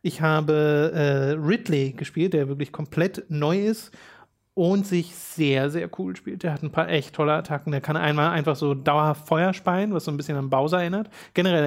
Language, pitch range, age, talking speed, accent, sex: German, 145-170 Hz, 30-49, 200 wpm, German, male